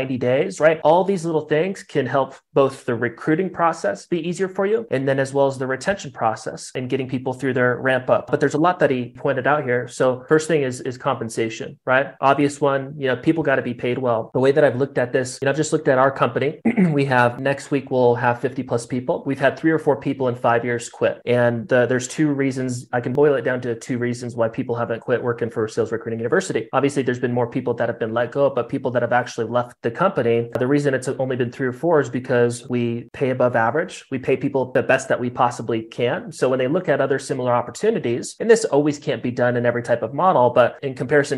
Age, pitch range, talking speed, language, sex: 30-49, 120-140 Hz, 255 wpm, English, male